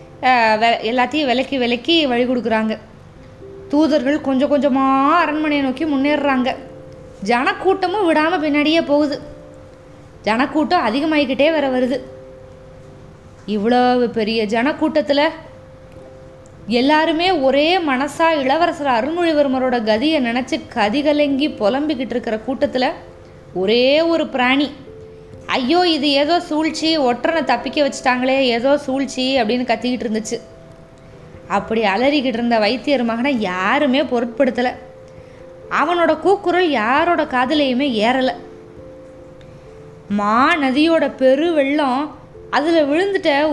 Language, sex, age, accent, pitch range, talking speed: Tamil, female, 20-39, native, 230-300 Hz, 90 wpm